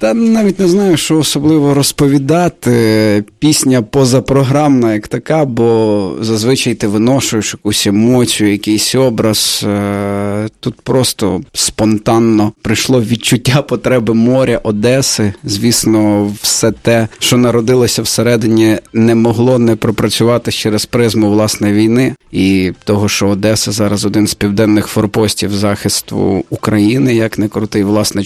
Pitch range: 105-125 Hz